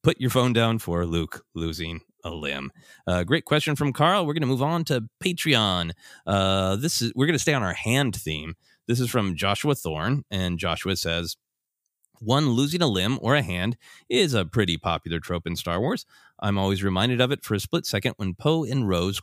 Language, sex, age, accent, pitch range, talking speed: English, male, 30-49, American, 95-140 Hz, 210 wpm